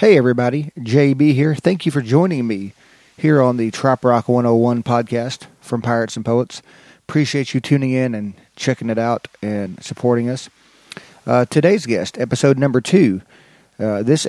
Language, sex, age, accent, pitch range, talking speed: English, male, 30-49, American, 115-135 Hz, 165 wpm